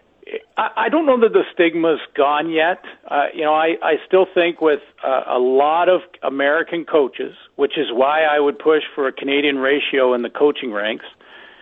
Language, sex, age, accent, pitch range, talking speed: English, male, 50-69, American, 140-180 Hz, 185 wpm